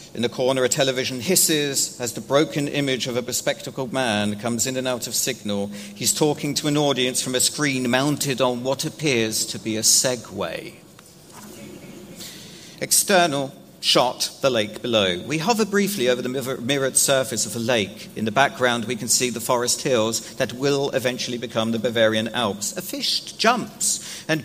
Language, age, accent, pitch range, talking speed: German, 50-69, British, 120-155 Hz, 175 wpm